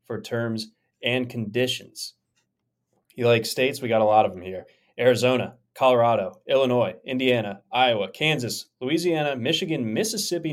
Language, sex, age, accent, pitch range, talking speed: English, male, 20-39, American, 110-135 Hz, 130 wpm